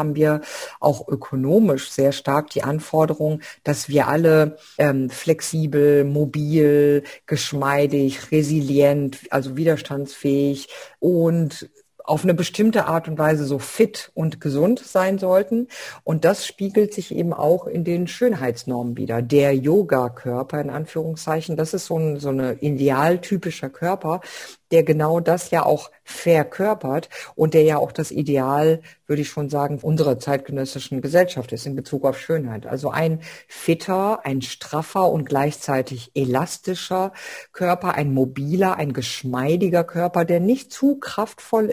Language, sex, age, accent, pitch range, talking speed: German, female, 50-69, German, 140-175 Hz, 135 wpm